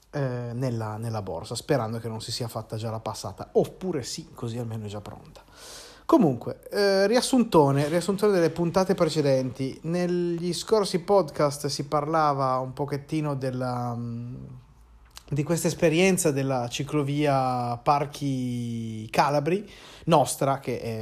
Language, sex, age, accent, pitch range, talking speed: Italian, male, 30-49, native, 120-155 Hz, 125 wpm